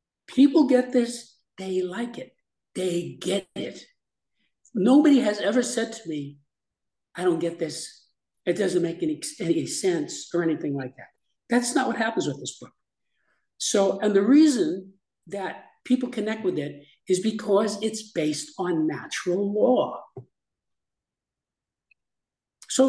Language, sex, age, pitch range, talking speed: English, male, 60-79, 170-235 Hz, 140 wpm